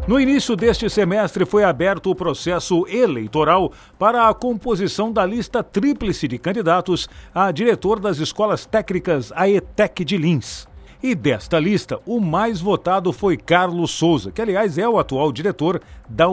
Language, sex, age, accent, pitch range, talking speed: Portuguese, male, 50-69, Brazilian, 150-205 Hz, 150 wpm